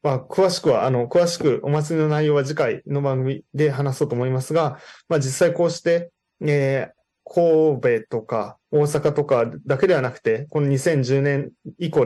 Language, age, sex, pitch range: Japanese, 20-39, male, 130-170 Hz